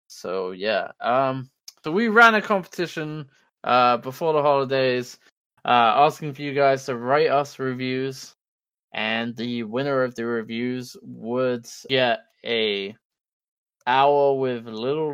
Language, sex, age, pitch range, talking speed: English, male, 20-39, 120-145 Hz, 130 wpm